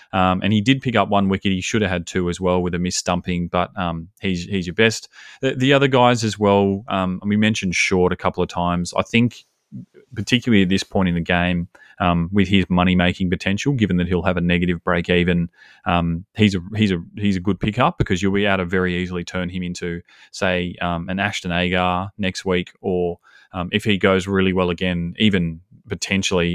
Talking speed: 220 wpm